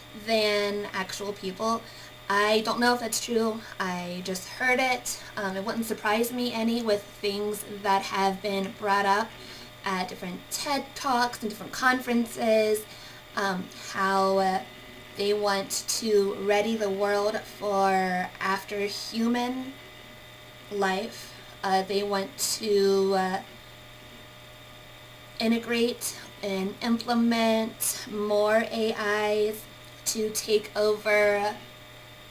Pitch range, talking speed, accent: 195-225 Hz, 110 wpm, American